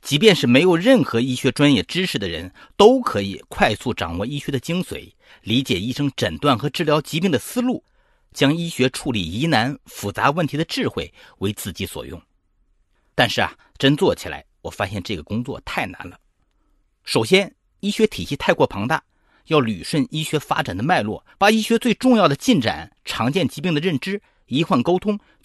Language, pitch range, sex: Chinese, 125-195 Hz, male